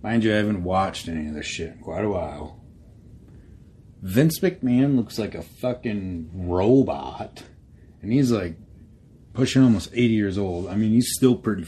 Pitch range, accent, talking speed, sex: 90-120 Hz, American, 170 wpm, male